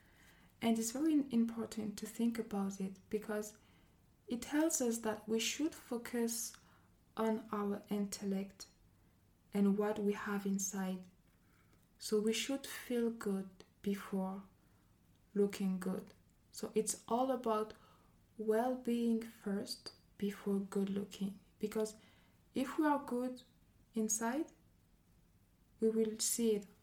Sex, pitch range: female, 200-225 Hz